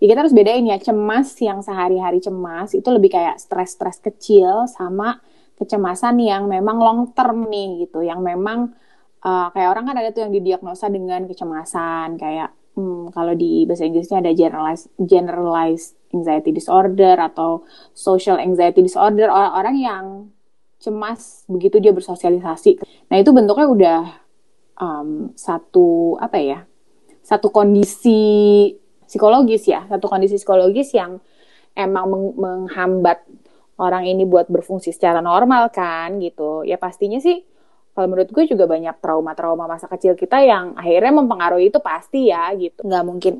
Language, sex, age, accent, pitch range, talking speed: Indonesian, female, 20-39, native, 180-230 Hz, 145 wpm